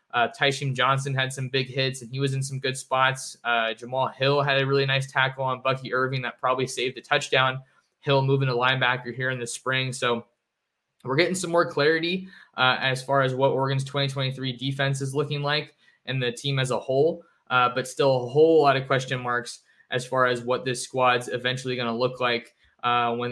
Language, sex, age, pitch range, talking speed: English, male, 20-39, 125-140 Hz, 215 wpm